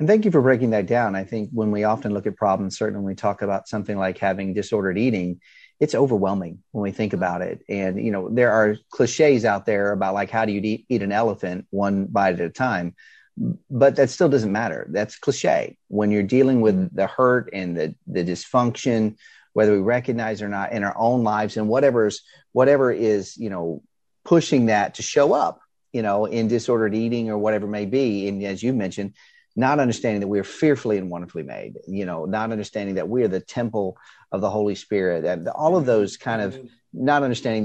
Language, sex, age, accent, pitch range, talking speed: English, male, 30-49, American, 100-125 Hz, 215 wpm